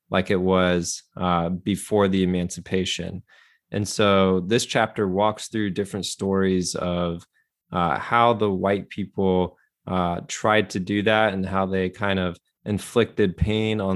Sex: male